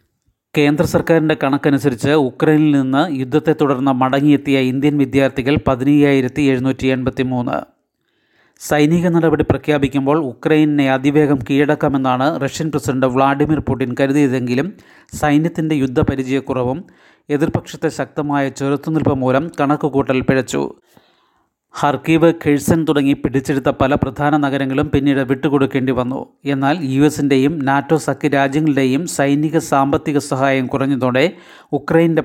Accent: native